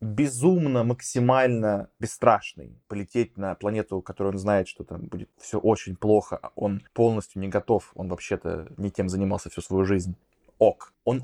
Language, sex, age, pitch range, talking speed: Russian, male, 20-39, 110-145 Hz, 155 wpm